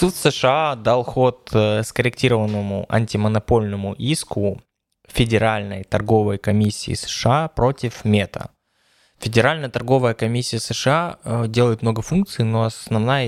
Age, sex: 20-39, male